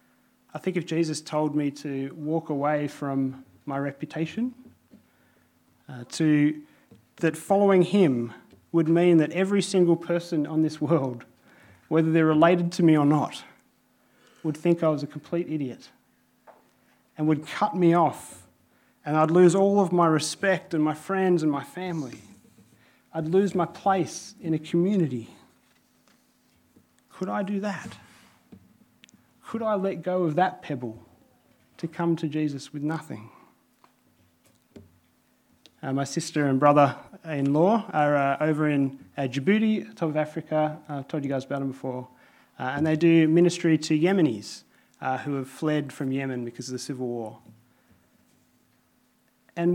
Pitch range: 140-175 Hz